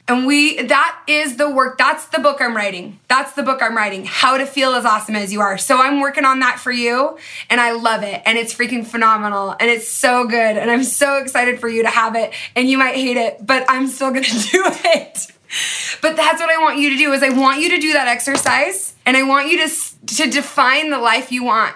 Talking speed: 250 wpm